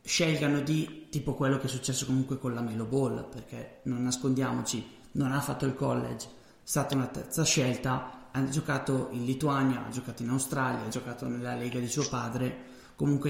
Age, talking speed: 20-39, 185 wpm